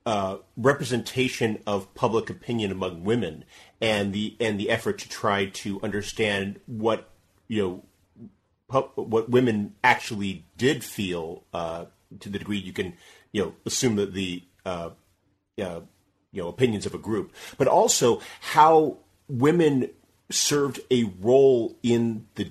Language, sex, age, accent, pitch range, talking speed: English, male, 40-59, American, 95-115 Hz, 140 wpm